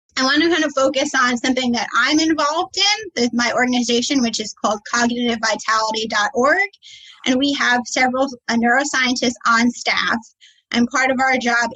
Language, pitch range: English, 235-275 Hz